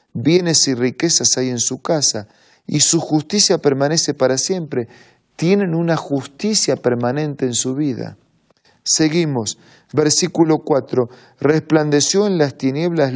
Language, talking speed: Spanish, 125 wpm